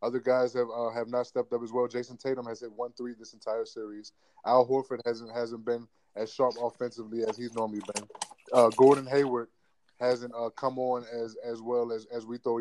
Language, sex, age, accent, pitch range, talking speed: English, male, 20-39, American, 115-125 Hz, 215 wpm